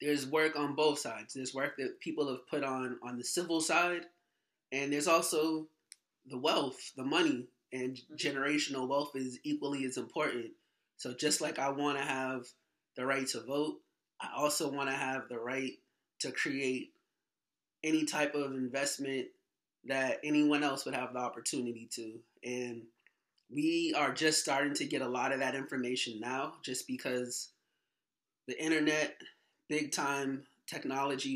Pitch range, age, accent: 125-145 Hz, 20-39, American